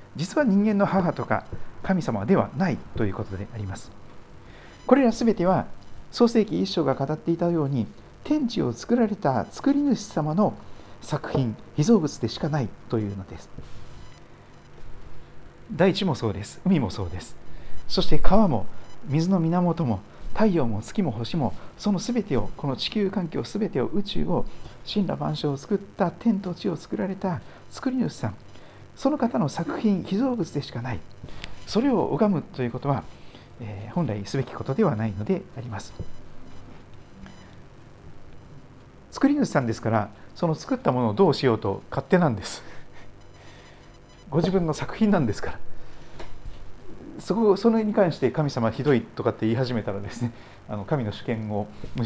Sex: male